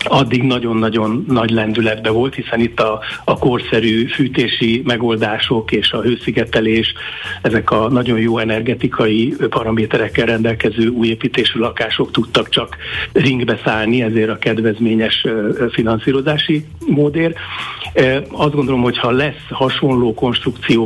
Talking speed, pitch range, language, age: 115 wpm, 115-130 Hz, Hungarian, 60-79